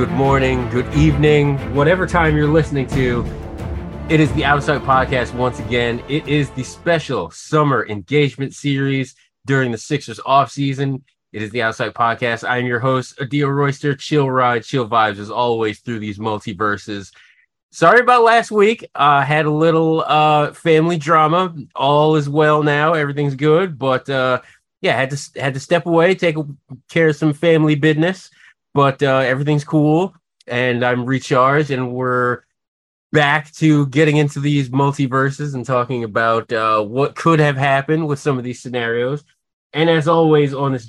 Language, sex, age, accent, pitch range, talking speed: English, male, 20-39, American, 120-150 Hz, 165 wpm